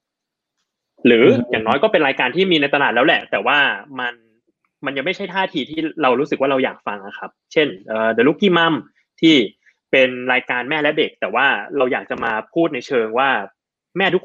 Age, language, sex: 20-39, Thai, male